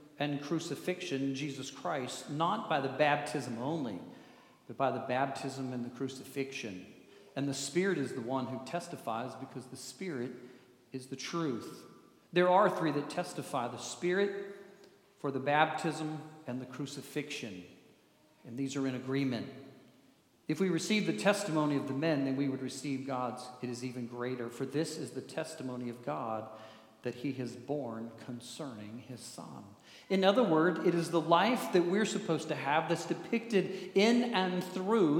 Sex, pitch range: male, 130-180 Hz